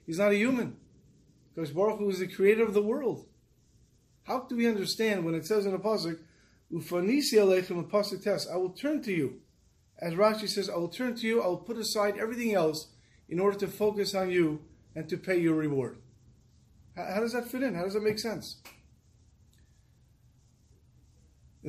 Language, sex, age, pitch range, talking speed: English, male, 30-49, 155-210 Hz, 180 wpm